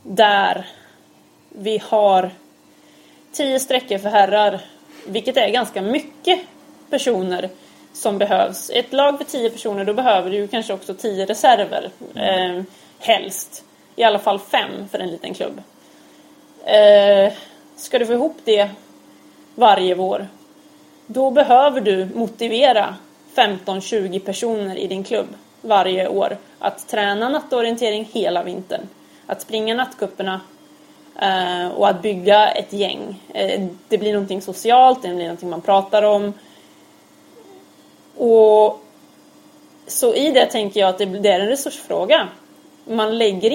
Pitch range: 195-270 Hz